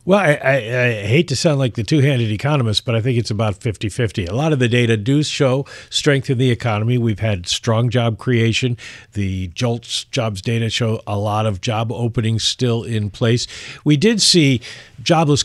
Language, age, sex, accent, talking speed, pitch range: English, 50-69, male, American, 190 wpm, 105-125 Hz